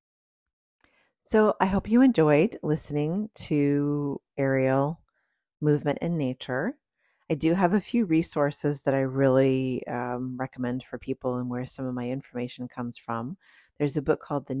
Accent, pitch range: American, 135-165 Hz